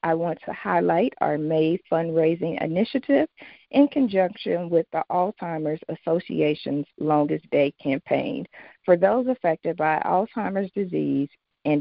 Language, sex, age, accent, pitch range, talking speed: English, female, 40-59, American, 155-205 Hz, 120 wpm